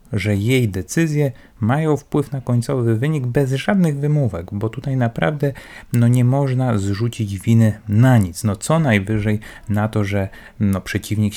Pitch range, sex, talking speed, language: 95-120 Hz, male, 135 wpm, Polish